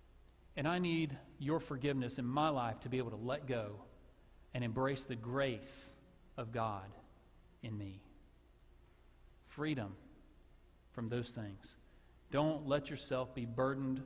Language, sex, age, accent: English, male, 40-59, American